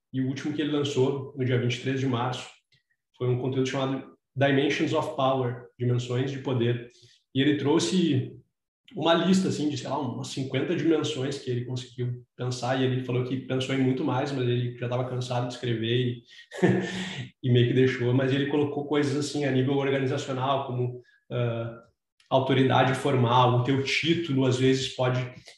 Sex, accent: male, Brazilian